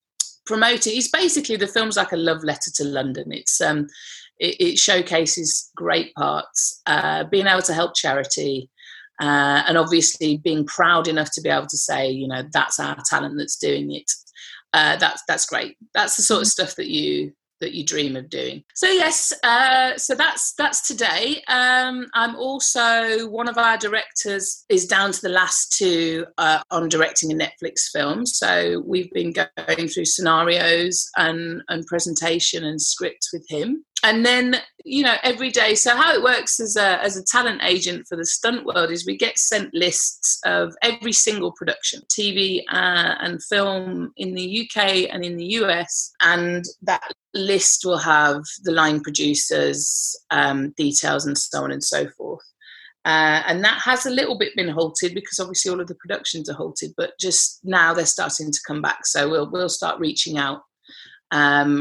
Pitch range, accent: 155-225 Hz, British